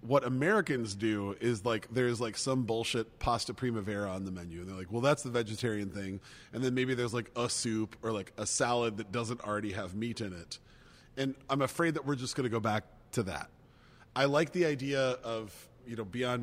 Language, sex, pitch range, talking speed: English, male, 115-140 Hz, 220 wpm